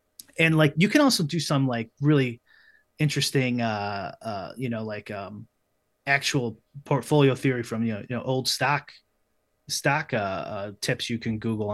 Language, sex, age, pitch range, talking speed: English, male, 30-49, 115-145 Hz, 170 wpm